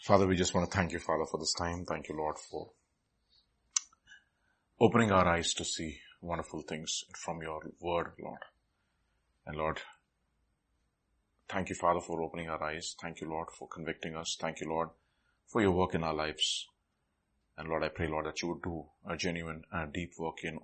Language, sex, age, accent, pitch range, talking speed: English, male, 30-49, Indian, 80-90 Hz, 190 wpm